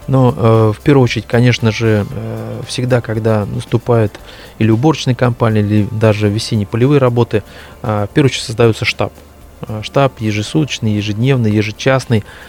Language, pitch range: Russian, 110-125 Hz